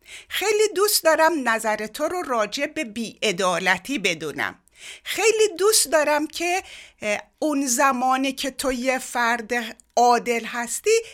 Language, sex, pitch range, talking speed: Persian, female, 205-340 Hz, 120 wpm